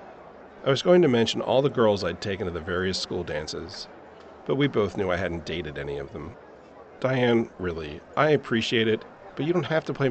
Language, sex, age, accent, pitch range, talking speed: English, male, 40-59, American, 95-135 Hz, 215 wpm